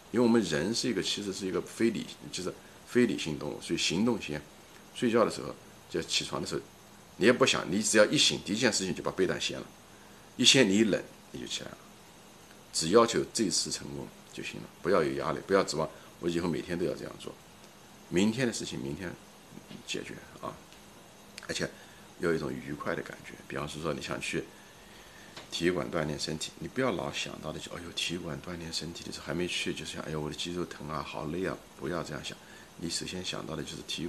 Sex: male